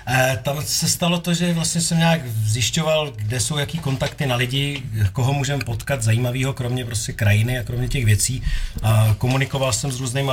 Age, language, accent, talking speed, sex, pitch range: 40-59, Czech, native, 185 wpm, male, 110-130 Hz